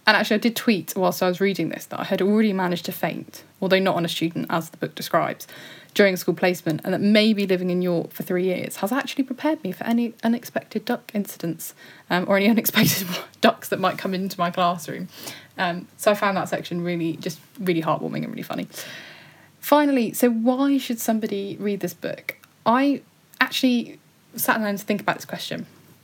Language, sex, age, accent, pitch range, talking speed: English, female, 10-29, British, 175-210 Hz, 205 wpm